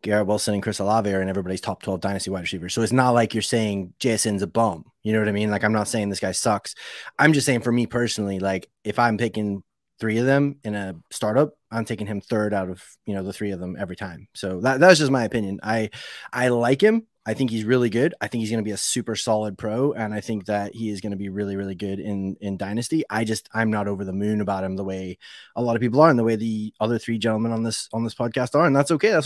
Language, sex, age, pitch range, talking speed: English, male, 20-39, 105-120 Hz, 280 wpm